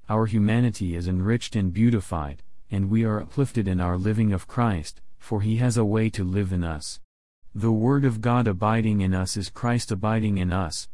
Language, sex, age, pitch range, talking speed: English, male, 40-59, 90-110 Hz, 195 wpm